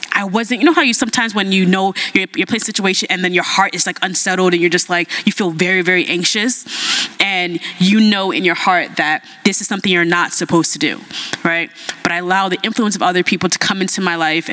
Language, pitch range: English, 170-215 Hz